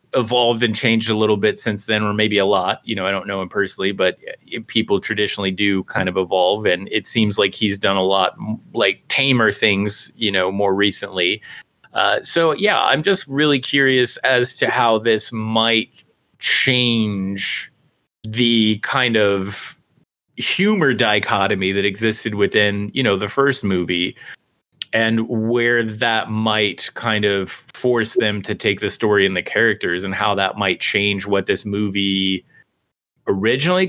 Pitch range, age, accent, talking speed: 100-125 Hz, 30-49, American, 160 wpm